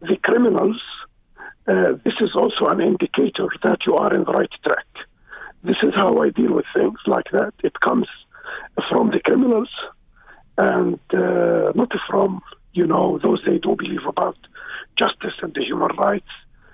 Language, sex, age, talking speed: English, male, 50-69, 160 wpm